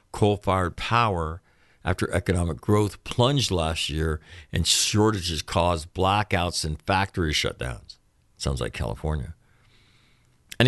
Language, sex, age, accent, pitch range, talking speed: English, male, 50-69, American, 85-110 Hz, 105 wpm